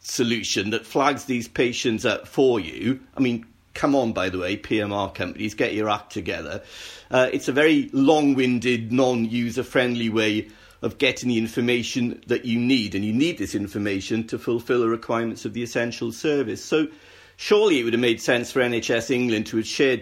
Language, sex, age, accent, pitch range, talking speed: English, male, 50-69, British, 105-135 Hz, 190 wpm